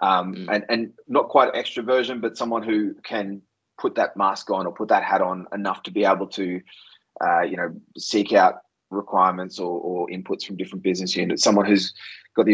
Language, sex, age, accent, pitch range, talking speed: English, male, 20-39, Australian, 95-105 Hz, 195 wpm